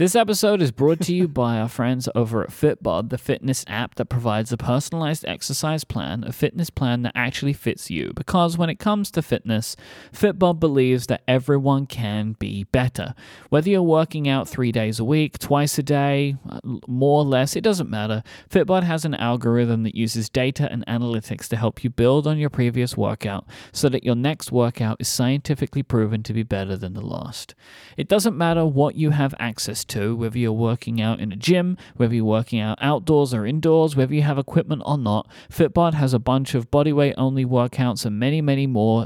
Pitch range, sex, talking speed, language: 115-150 Hz, male, 200 wpm, English